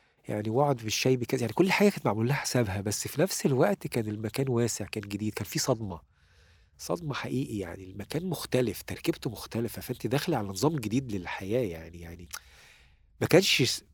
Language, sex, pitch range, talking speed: Arabic, male, 95-125 Hz, 170 wpm